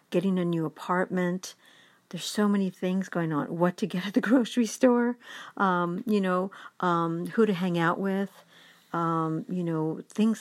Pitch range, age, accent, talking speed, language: 160-195 Hz, 60-79, American, 175 wpm, English